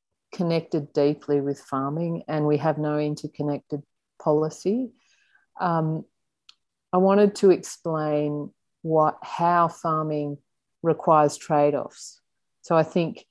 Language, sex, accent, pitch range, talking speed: English, female, Australian, 145-165 Hz, 105 wpm